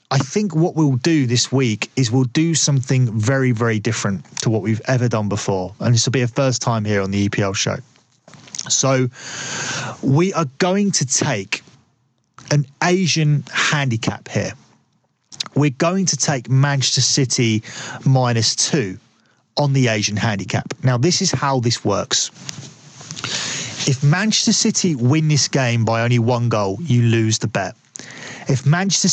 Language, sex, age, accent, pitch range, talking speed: English, male, 30-49, British, 120-155 Hz, 155 wpm